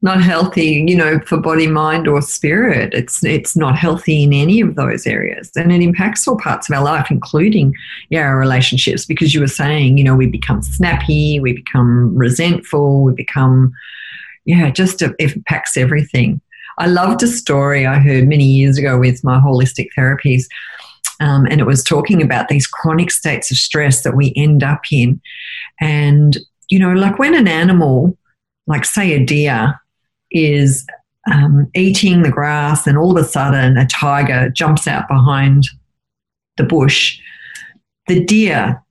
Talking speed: 170 wpm